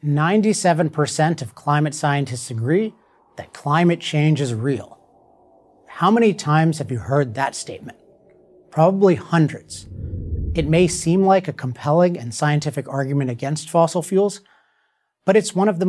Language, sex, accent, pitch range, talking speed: English, male, American, 140-180 Hz, 140 wpm